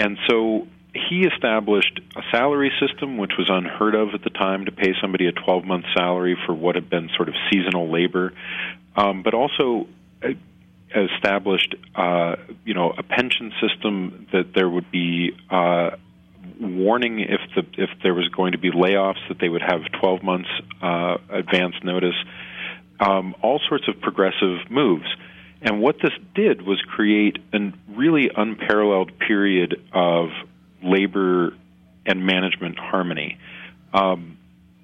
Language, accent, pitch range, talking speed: English, American, 90-100 Hz, 145 wpm